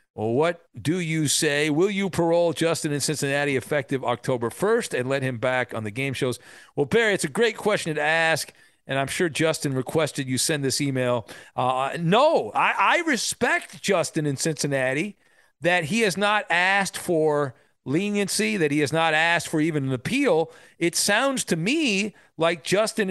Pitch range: 150-205 Hz